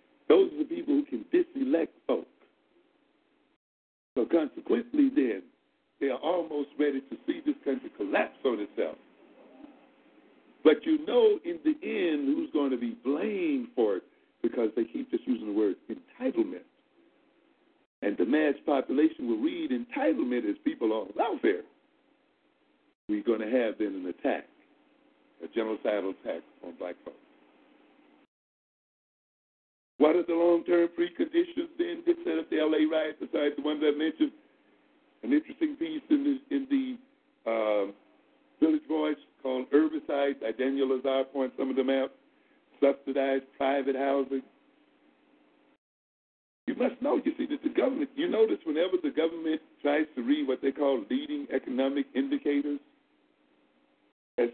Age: 60-79